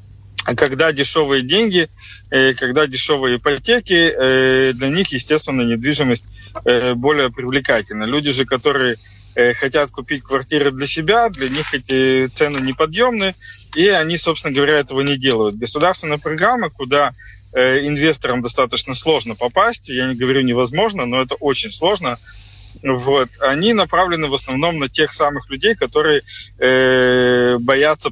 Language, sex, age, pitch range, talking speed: Russian, male, 30-49, 125-150 Hz, 130 wpm